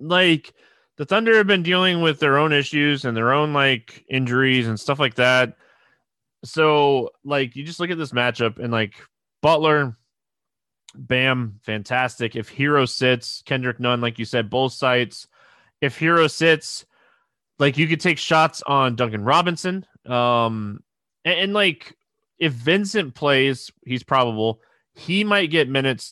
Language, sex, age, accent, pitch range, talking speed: English, male, 20-39, American, 125-165 Hz, 150 wpm